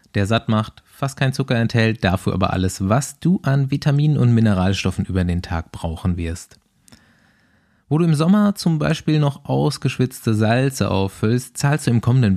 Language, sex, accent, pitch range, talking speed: German, male, German, 95-135 Hz, 170 wpm